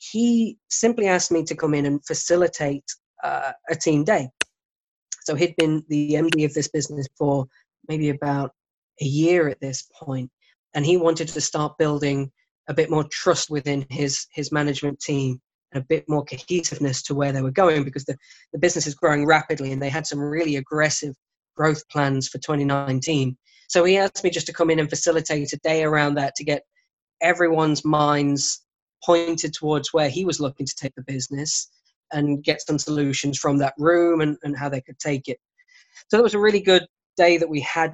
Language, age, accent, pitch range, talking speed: English, 20-39, British, 140-160 Hz, 195 wpm